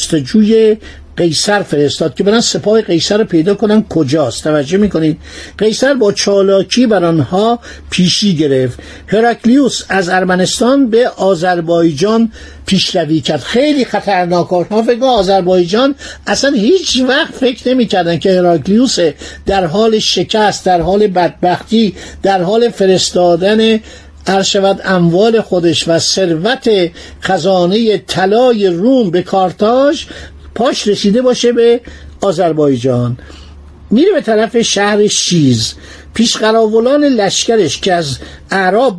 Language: Persian